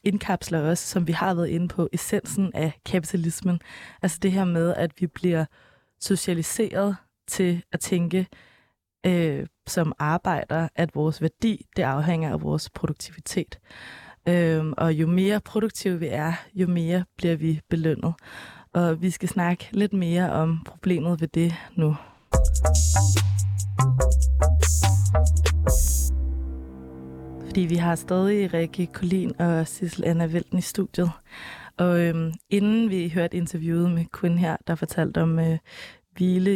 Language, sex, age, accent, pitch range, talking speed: Danish, female, 20-39, native, 160-185 Hz, 135 wpm